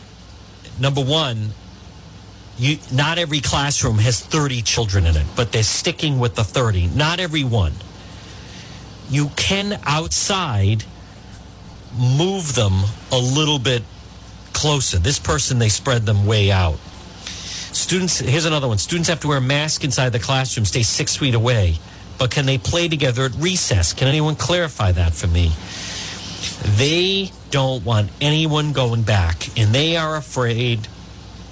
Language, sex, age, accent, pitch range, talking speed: English, male, 50-69, American, 95-140 Hz, 145 wpm